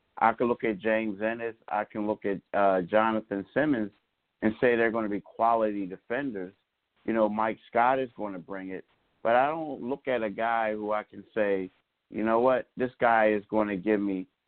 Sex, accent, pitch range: male, American, 100-120 Hz